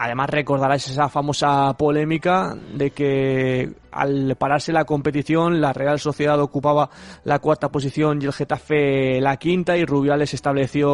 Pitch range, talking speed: 135-160 Hz, 145 wpm